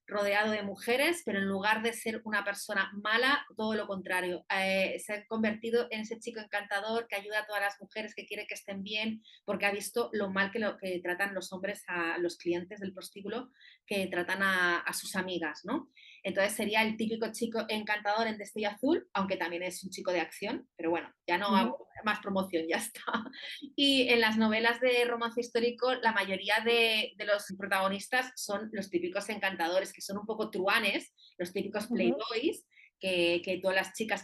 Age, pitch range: 30-49, 190-230 Hz